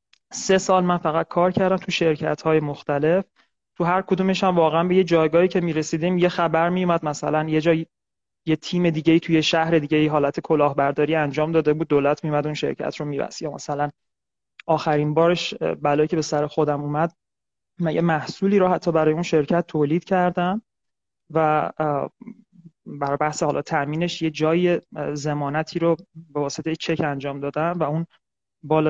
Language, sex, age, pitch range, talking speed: Persian, male, 30-49, 150-185 Hz, 160 wpm